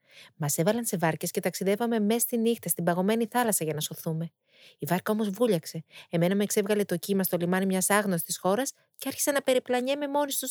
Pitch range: 170-220 Hz